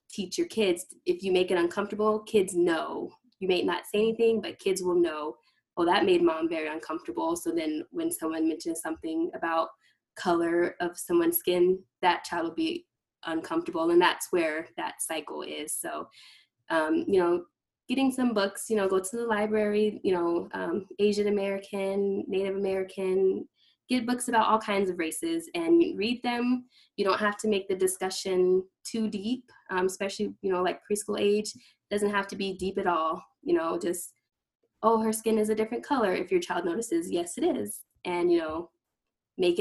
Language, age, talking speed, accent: English, 10-29, 185 wpm, American